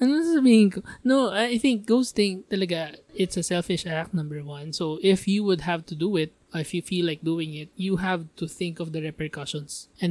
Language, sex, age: English, male, 20-39